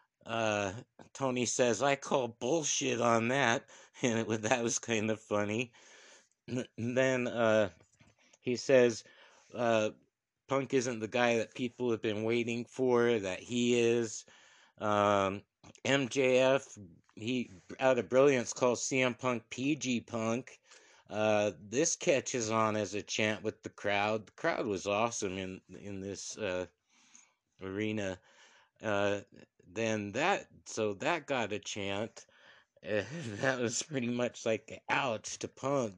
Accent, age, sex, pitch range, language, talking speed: American, 60-79, male, 105-125 Hz, English, 130 wpm